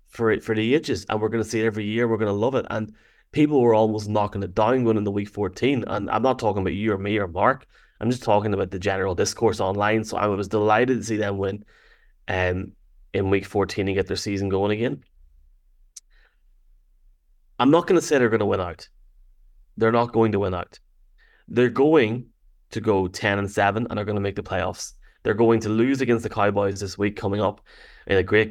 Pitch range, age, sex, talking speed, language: 100-115 Hz, 20-39, male, 220 wpm, English